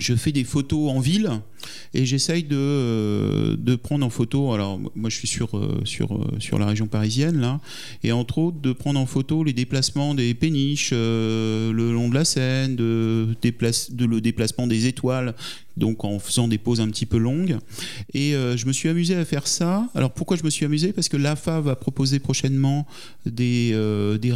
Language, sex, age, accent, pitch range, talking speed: French, male, 40-59, French, 120-160 Hz, 200 wpm